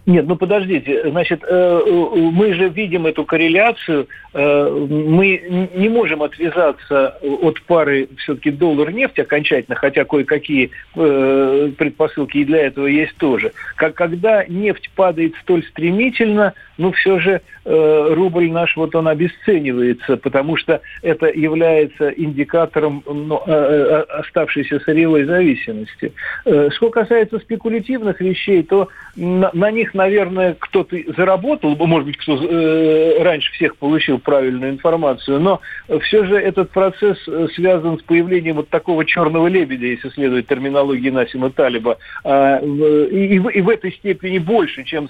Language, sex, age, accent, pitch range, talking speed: Russian, male, 50-69, native, 145-185 Hz, 125 wpm